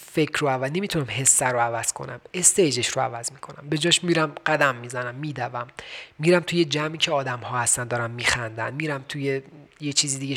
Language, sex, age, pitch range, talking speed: Persian, male, 30-49, 125-155 Hz, 185 wpm